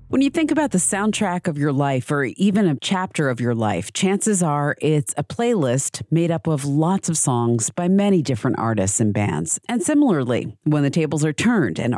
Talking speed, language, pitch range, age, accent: 205 wpm, English, 130-185 Hz, 40-59, American